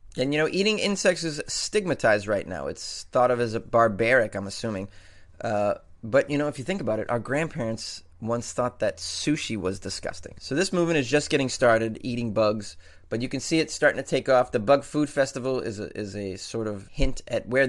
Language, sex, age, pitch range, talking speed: English, male, 30-49, 110-140 Hz, 220 wpm